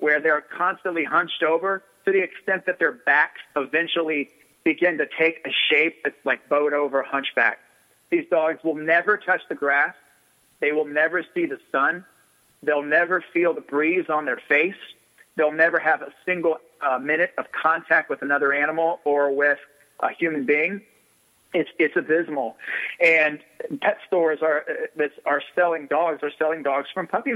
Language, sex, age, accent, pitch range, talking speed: English, male, 40-59, American, 145-170 Hz, 165 wpm